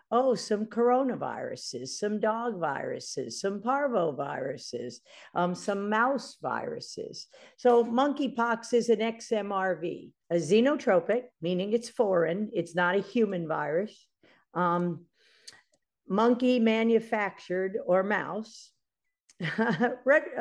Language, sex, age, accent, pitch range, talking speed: English, female, 50-69, American, 205-240 Hz, 95 wpm